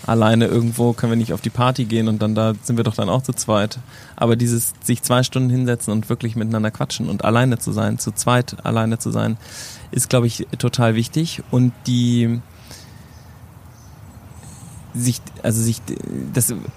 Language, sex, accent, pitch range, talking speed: German, male, German, 115-145 Hz, 175 wpm